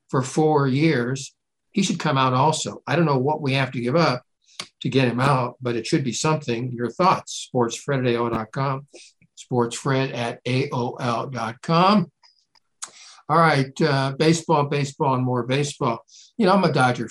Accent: American